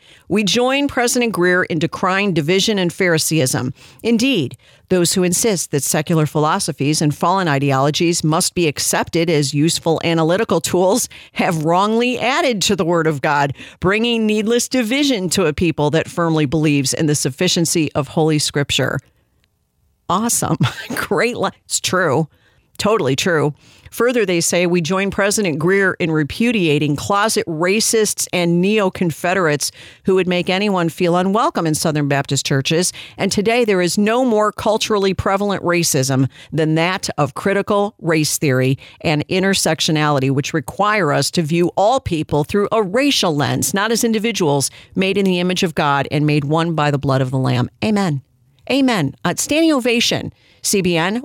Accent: American